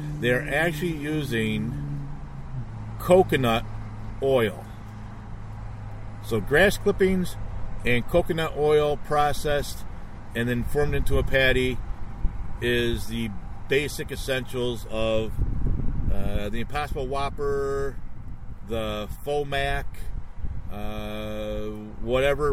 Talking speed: 85 wpm